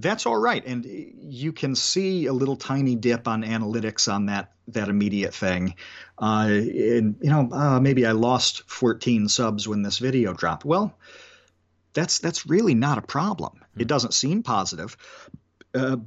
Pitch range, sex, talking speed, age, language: 110-145 Hz, male, 165 wpm, 40-59, English